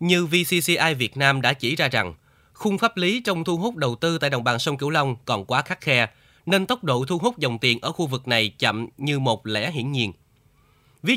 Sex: male